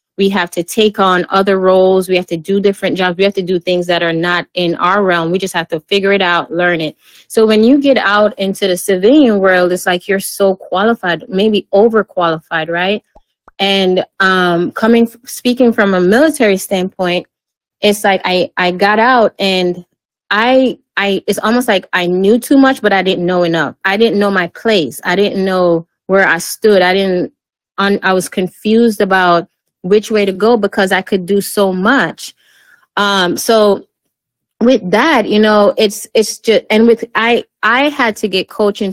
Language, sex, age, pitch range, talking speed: English, female, 20-39, 180-220 Hz, 190 wpm